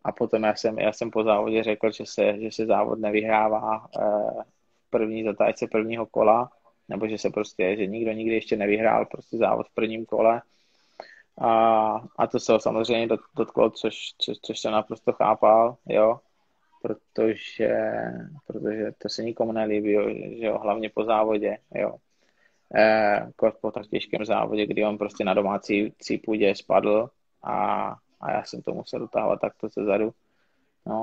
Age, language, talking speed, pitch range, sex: 20-39, Czech, 165 wpm, 110-115 Hz, male